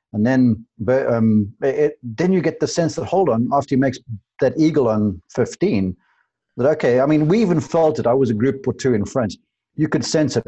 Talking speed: 230 wpm